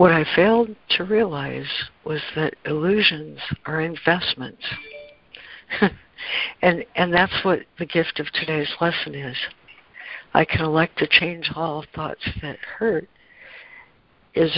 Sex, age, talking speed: female, 60-79, 125 wpm